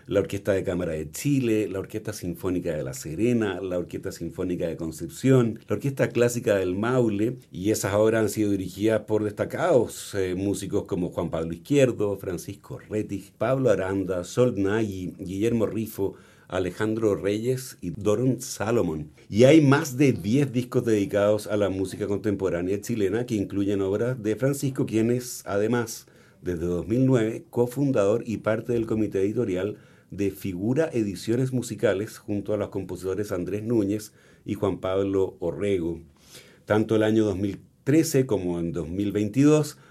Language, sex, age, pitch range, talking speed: Spanish, male, 50-69, 95-120 Hz, 145 wpm